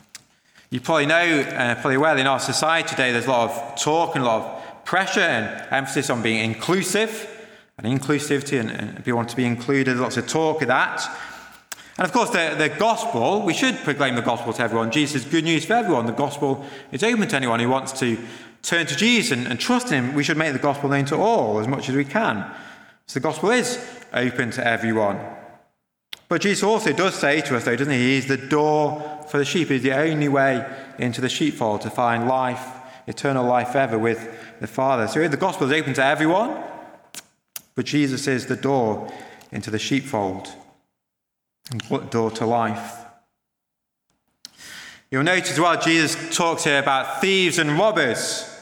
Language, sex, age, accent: English, male, 30-49, British